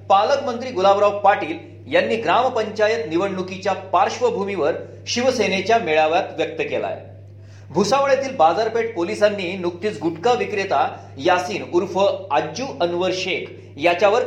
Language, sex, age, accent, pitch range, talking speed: Marathi, male, 40-59, native, 165-220 Hz, 100 wpm